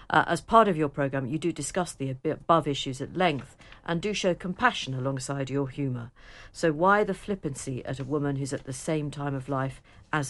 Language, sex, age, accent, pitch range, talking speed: English, female, 50-69, British, 140-190 Hz, 210 wpm